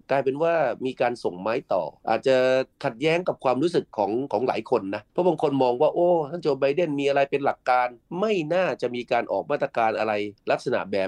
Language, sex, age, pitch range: Thai, male, 30-49, 110-150 Hz